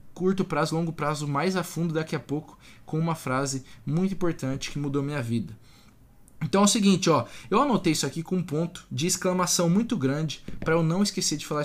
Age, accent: 20-39, Brazilian